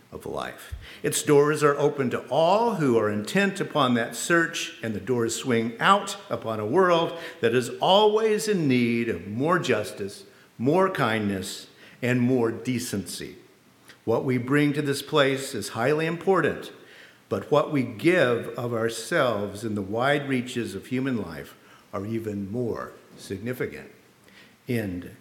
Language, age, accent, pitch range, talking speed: English, 50-69, American, 120-170 Hz, 150 wpm